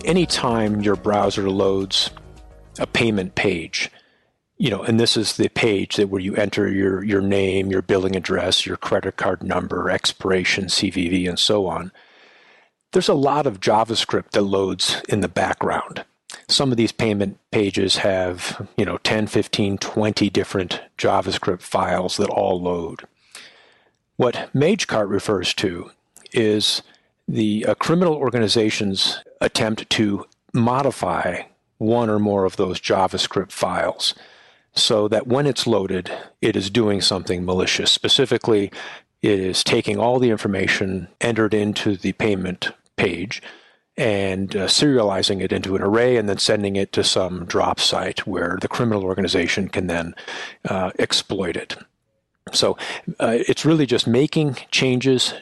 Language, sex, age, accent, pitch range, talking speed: English, male, 40-59, American, 95-115 Hz, 145 wpm